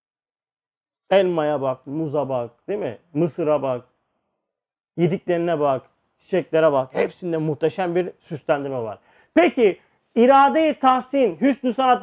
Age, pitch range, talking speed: 40-59, 165-250 Hz, 110 wpm